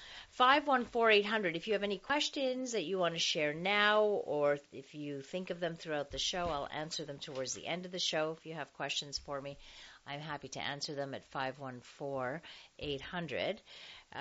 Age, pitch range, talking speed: 40-59, 155-220 Hz, 205 wpm